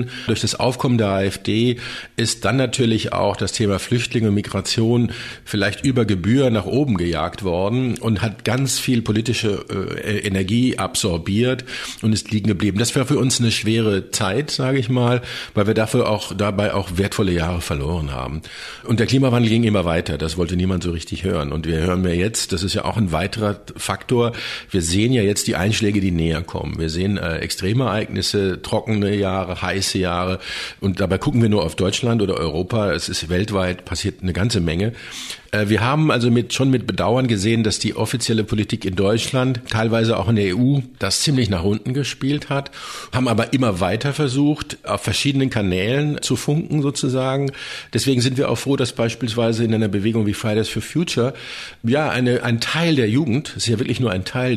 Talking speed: 185 wpm